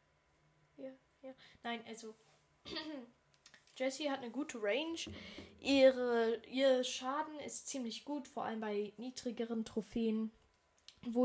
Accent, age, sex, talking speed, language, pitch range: German, 10-29, female, 95 wpm, German, 215-250 Hz